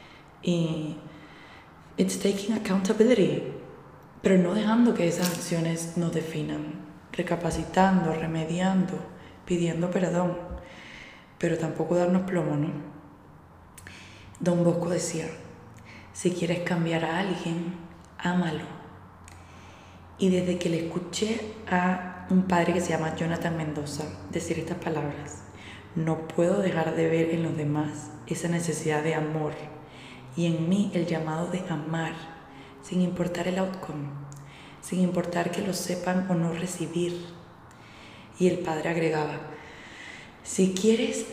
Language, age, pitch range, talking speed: Spanish, 20-39, 150-180 Hz, 120 wpm